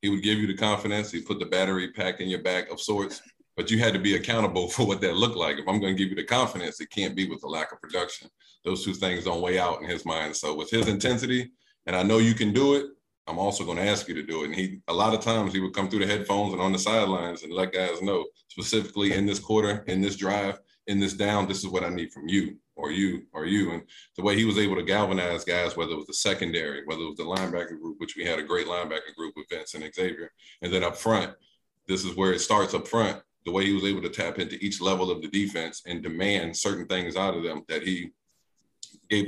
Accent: American